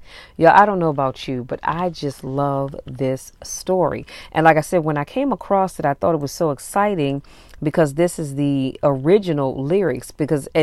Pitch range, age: 130-155 Hz, 40-59